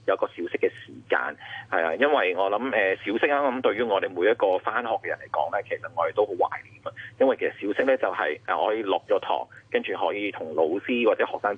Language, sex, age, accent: Chinese, male, 30-49, native